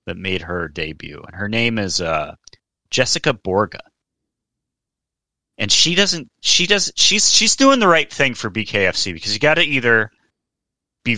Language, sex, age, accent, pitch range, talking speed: English, male, 30-49, American, 90-120 Hz, 155 wpm